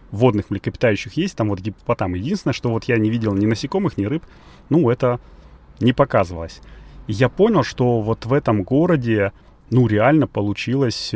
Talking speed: 160 wpm